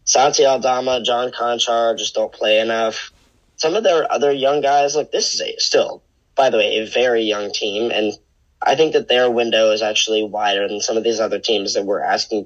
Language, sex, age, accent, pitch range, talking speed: English, male, 10-29, American, 110-135 Hz, 205 wpm